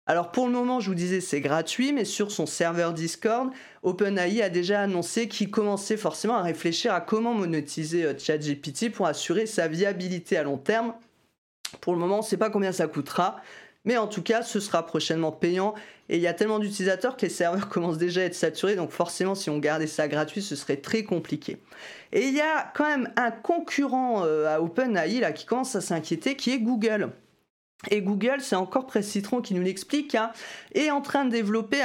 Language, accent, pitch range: French, French, 165-220 Hz